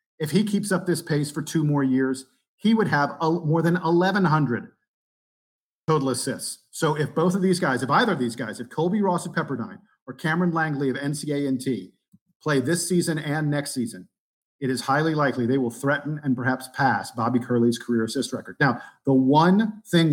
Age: 50-69